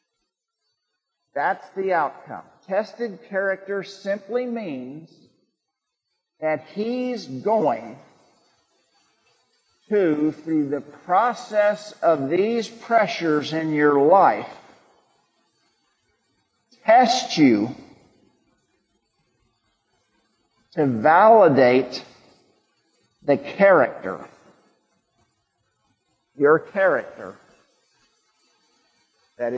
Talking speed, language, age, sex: 60 wpm, English, 50-69, male